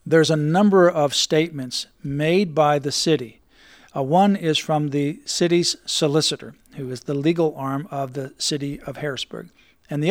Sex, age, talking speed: male, 50-69, 165 wpm